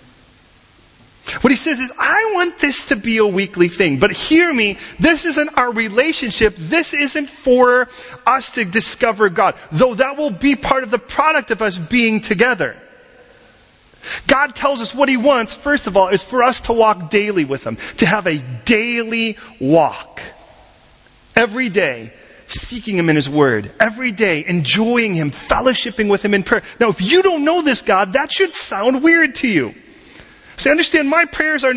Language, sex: English, male